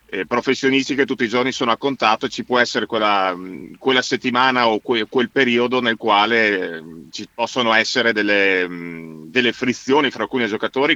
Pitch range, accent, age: 110-125 Hz, native, 40-59